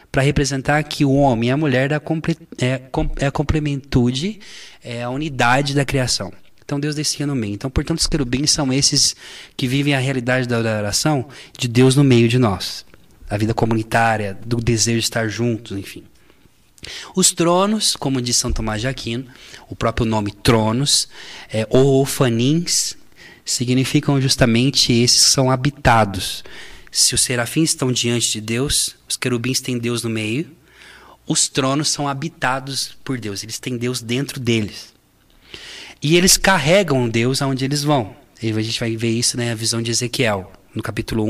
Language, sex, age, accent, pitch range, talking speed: Portuguese, male, 20-39, Brazilian, 115-140 Hz, 165 wpm